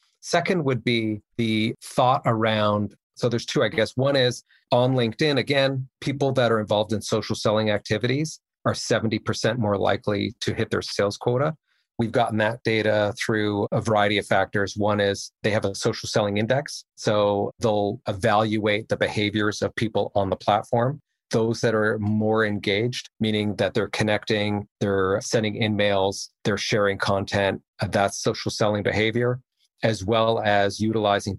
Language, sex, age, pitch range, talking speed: English, male, 40-59, 100-115 Hz, 160 wpm